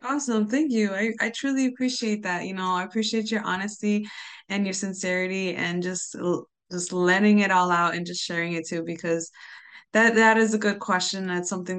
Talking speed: 195 wpm